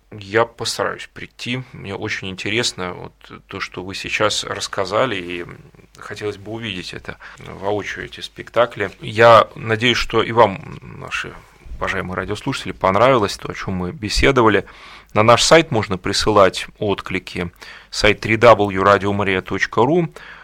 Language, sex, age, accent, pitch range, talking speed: Russian, male, 30-49, native, 100-120 Hz, 130 wpm